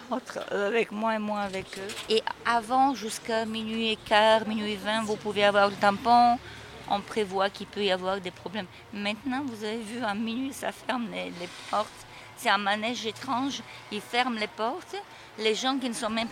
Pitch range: 195-235 Hz